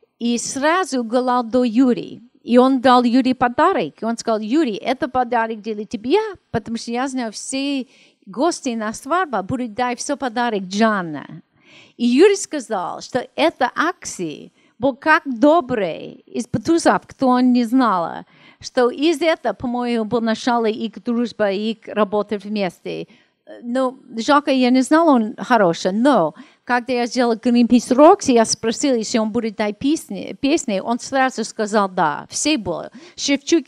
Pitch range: 225-275 Hz